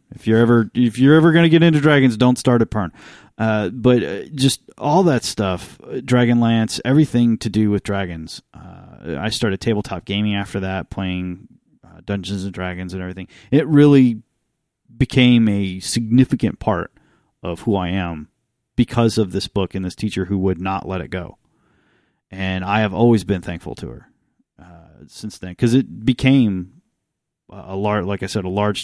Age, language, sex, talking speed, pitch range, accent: 30-49, English, male, 175 wpm, 90-115 Hz, American